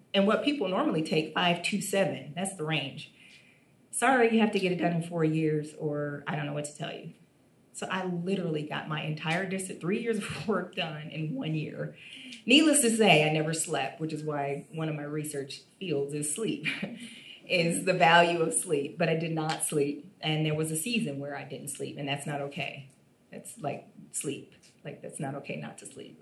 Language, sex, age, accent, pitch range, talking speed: English, female, 30-49, American, 155-200 Hz, 210 wpm